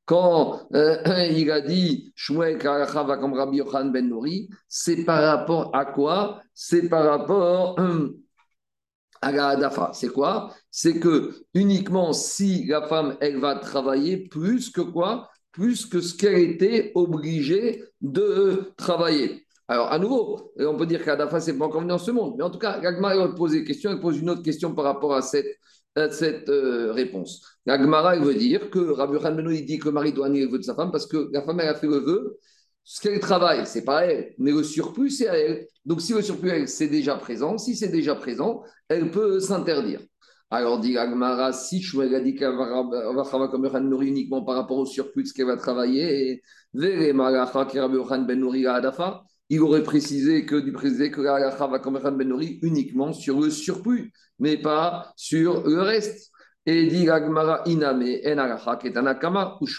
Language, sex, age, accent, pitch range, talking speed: French, male, 50-69, French, 135-180 Hz, 180 wpm